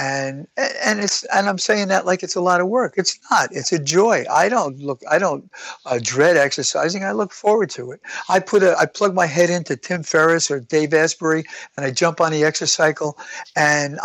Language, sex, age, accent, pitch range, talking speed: English, male, 60-79, American, 135-165 Hz, 220 wpm